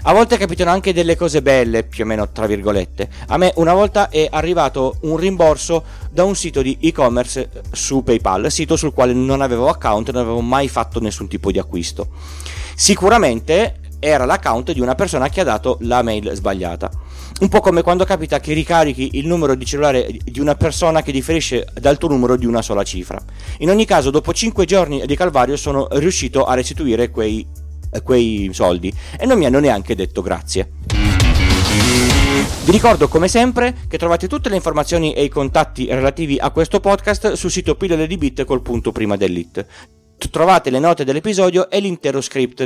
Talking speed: 180 wpm